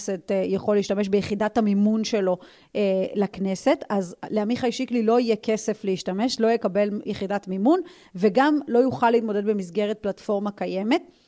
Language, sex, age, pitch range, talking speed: Hebrew, female, 30-49, 205-255 Hz, 130 wpm